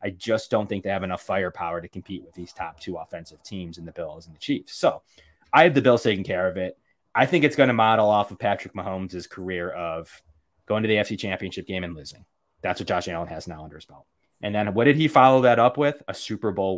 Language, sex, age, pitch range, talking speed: English, male, 20-39, 95-115 Hz, 260 wpm